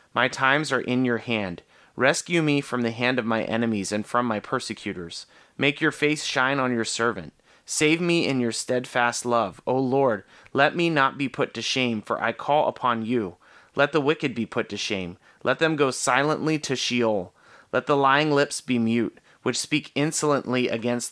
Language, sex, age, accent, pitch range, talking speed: English, male, 30-49, American, 115-135 Hz, 195 wpm